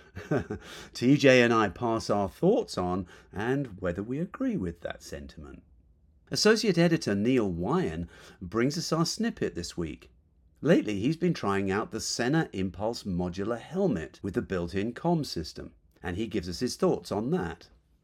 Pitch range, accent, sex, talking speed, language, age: 90-125 Hz, British, male, 155 wpm, English, 40-59